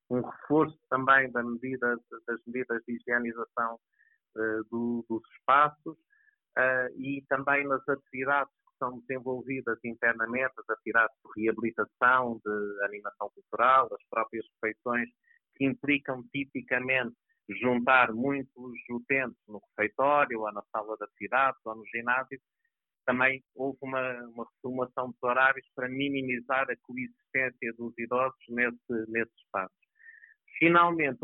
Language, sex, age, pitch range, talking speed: Portuguese, male, 50-69, 115-140 Hz, 115 wpm